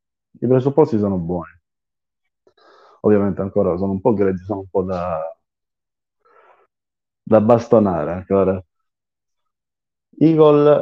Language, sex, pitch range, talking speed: Italian, male, 85-105 Hz, 100 wpm